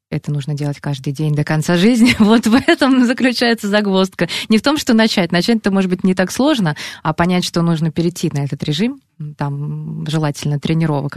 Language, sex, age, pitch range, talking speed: Russian, female, 20-39, 155-205 Hz, 195 wpm